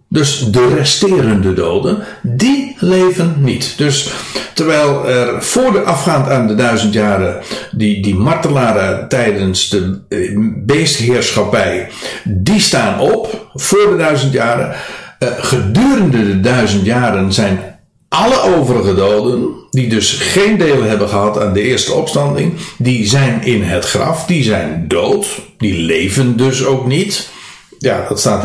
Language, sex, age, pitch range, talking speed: Dutch, male, 60-79, 100-145 Hz, 135 wpm